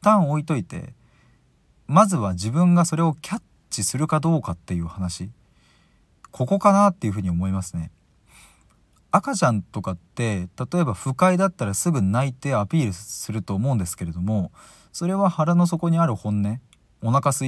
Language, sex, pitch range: Japanese, male, 95-155 Hz